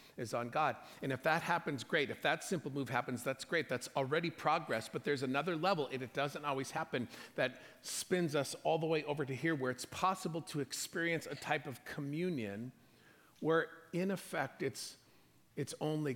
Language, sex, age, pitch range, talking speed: English, male, 50-69, 125-155 Hz, 190 wpm